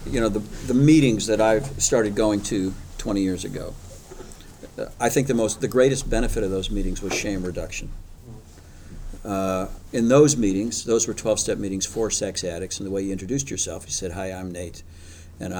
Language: English